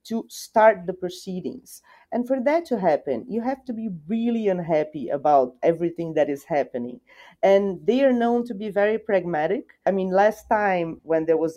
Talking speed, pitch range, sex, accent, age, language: 180 wpm, 170-230 Hz, female, Brazilian, 40-59, English